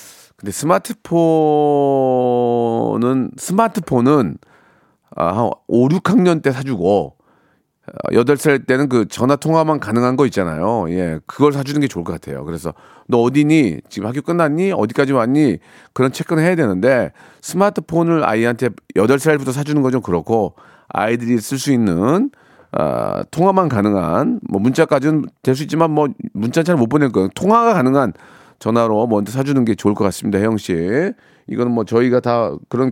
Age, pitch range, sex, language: 40-59, 115-160 Hz, male, Korean